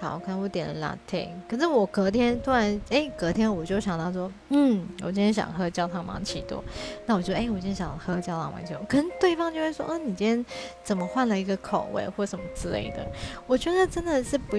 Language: Chinese